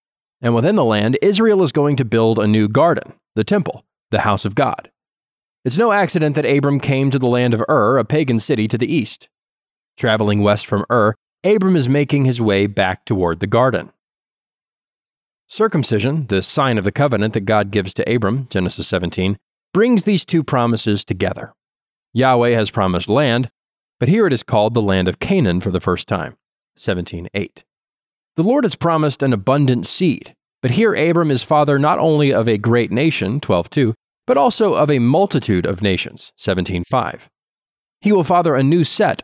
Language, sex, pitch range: English, male, 105-150 Hz